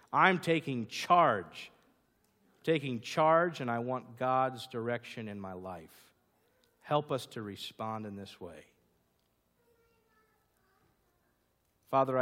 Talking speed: 105 wpm